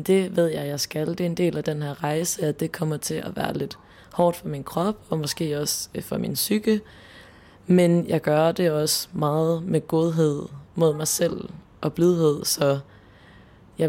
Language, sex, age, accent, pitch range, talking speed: Danish, female, 20-39, native, 145-170 Hz, 195 wpm